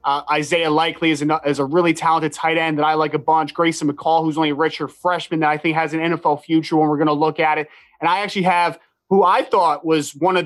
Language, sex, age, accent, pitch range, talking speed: English, male, 20-39, American, 155-180 Hz, 265 wpm